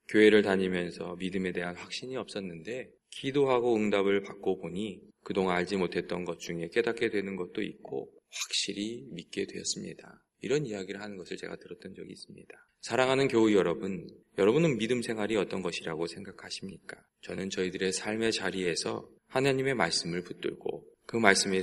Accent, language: native, Korean